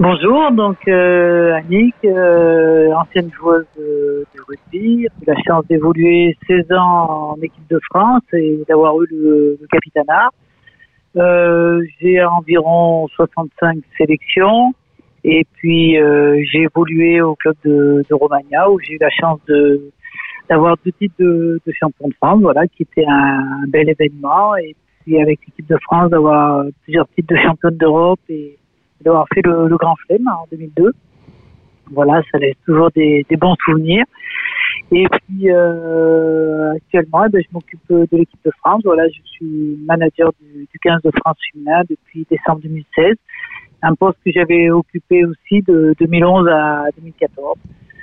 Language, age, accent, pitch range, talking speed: French, 60-79, French, 155-175 Hz, 160 wpm